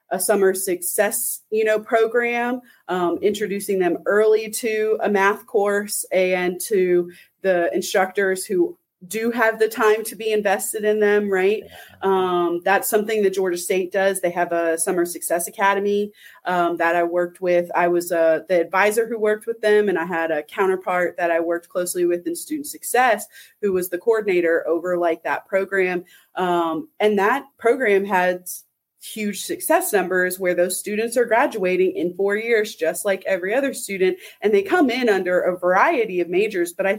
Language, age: English, 30-49